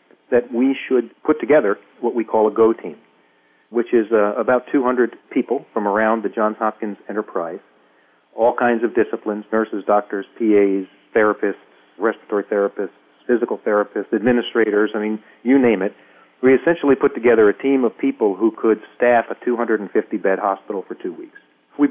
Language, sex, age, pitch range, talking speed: English, male, 40-59, 105-125 Hz, 160 wpm